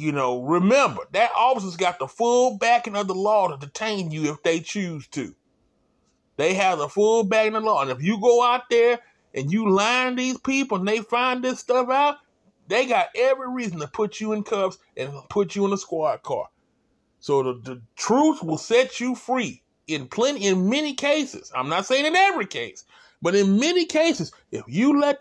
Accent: American